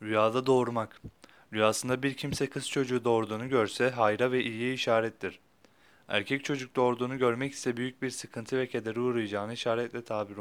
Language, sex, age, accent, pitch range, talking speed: Turkish, male, 30-49, native, 115-135 Hz, 150 wpm